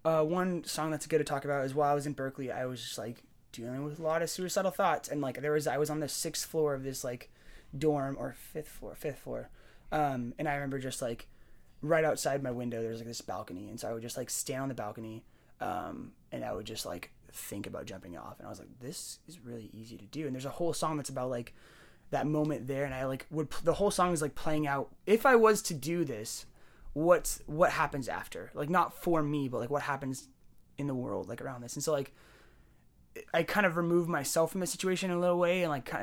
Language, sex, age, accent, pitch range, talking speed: English, male, 20-39, American, 135-170 Hz, 255 wpm